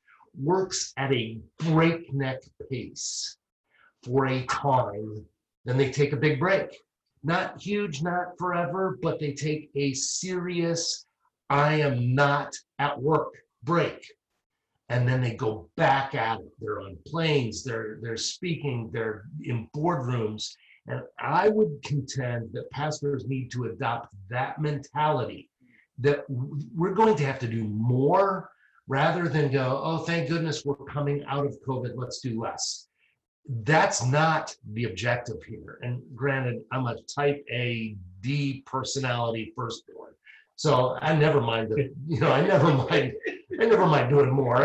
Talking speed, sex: 140 wpm, male